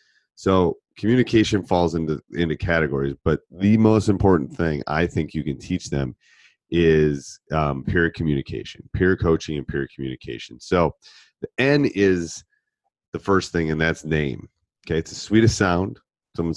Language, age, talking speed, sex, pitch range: English, 30-49, 150 wpm, male, 75-95 Hz